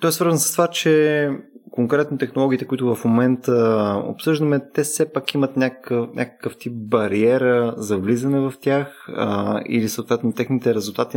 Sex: male